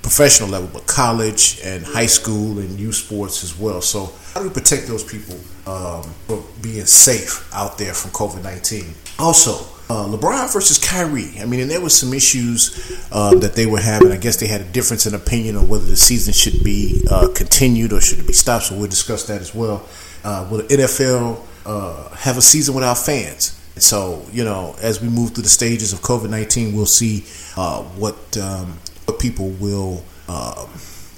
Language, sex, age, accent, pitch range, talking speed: English, male, 30-49, American, 95-120 Hz, 190 wpm